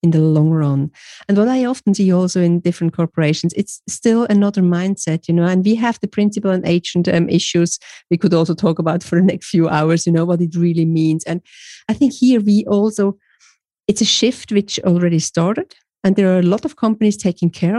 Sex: female